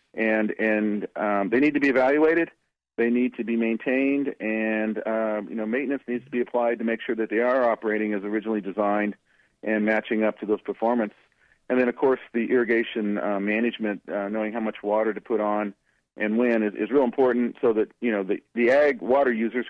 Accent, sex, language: American, male, English